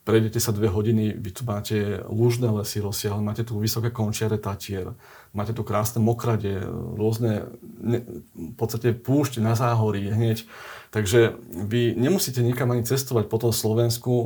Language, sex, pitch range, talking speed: Slovak, male, 105-120 Hz, 140 wpm